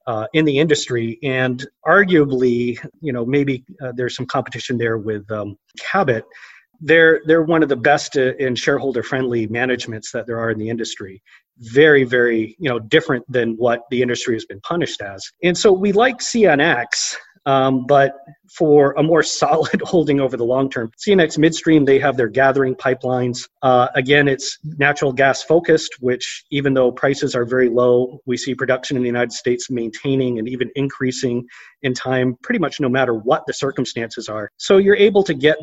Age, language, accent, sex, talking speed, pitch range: 30-49, English, American, male, 190 wpm, 125-155 Hz